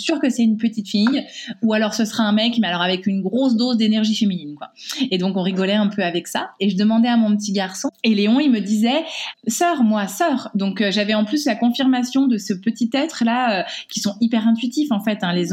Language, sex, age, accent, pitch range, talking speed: French, female, 20-39, French, 195-240 Hz, 245 wpm